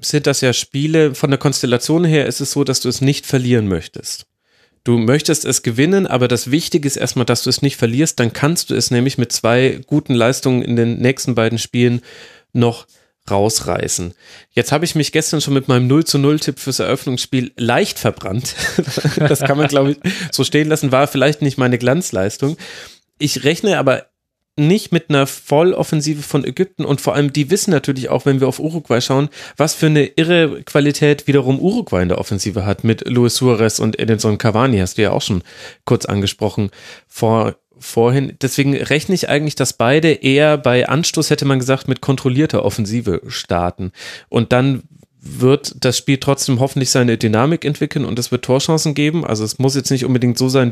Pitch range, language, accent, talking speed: 120-145 Hz, German, German, 190 wpm